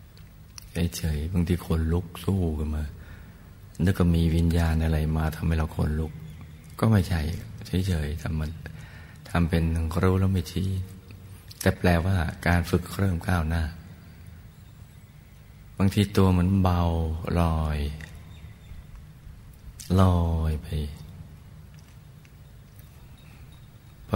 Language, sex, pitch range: Thai, male, 80-90 Hz